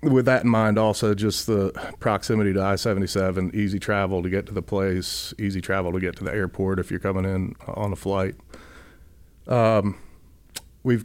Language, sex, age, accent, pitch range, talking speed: English, male, 40-59, American, 95-110 Hz, 180 wpm